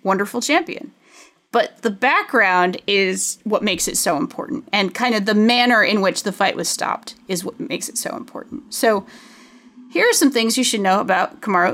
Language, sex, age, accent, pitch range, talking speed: English, female, 30-49, American, 200-255 Hz, 195 wpm